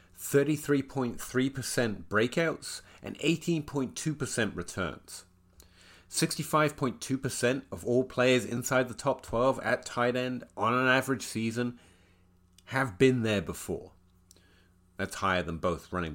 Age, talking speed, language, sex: 30-49, 110 wpm, English, male